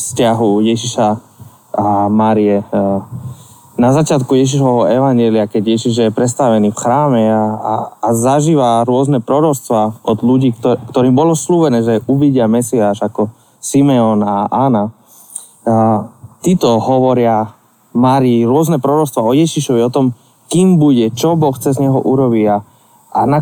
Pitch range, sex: 115-140 Hz, male